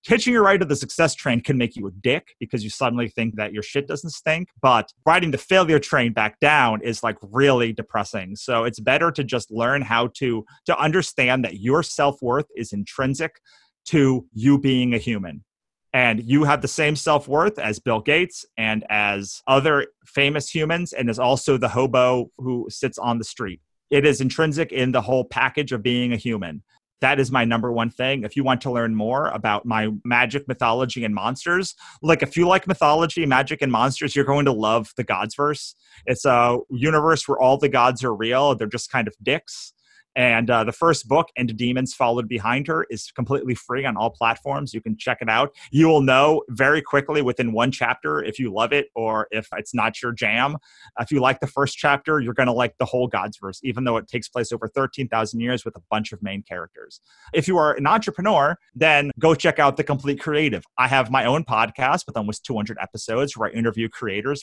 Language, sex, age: English, male, 30-49